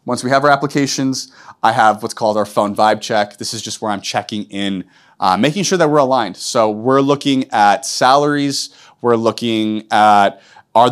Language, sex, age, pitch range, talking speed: English, male, 30-49, 110-145 Hz, 190 wpm